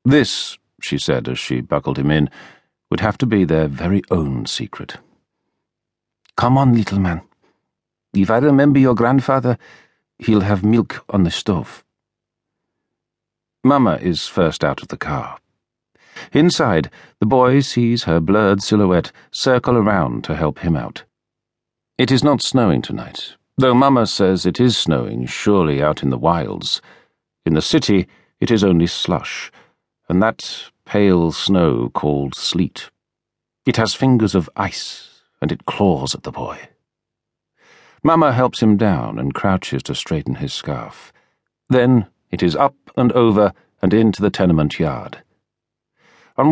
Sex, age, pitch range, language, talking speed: male, 50-69, 85-125 Hz, English, 145 wpm